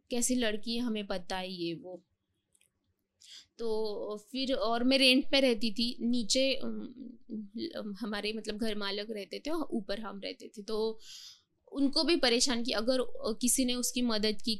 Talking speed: 155 wpm